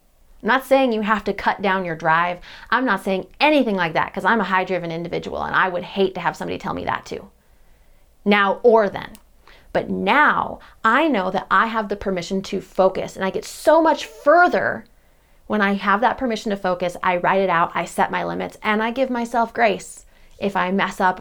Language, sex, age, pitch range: English, female, 20-39, 190-230 Hz